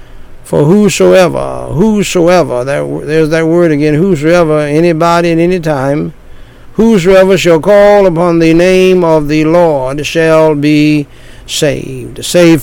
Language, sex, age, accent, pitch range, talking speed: English, male, 60-79, American, 140-175 Hz, 120 wpm